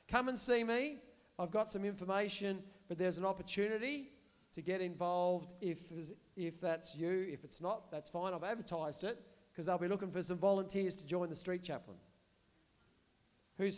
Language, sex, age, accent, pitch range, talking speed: English, male, 40-59, Australian, 165-195 Hz, 175 wpm